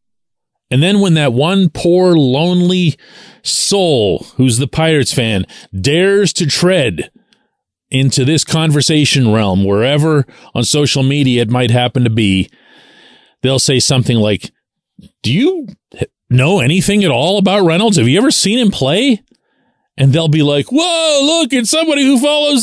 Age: 40-59